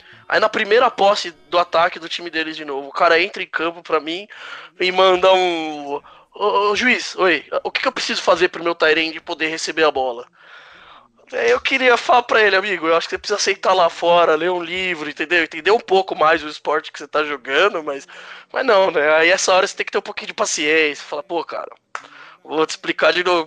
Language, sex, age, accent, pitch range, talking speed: Portuguese, male, 20-39, Brazilian, 160-230 Hz, 235 wpm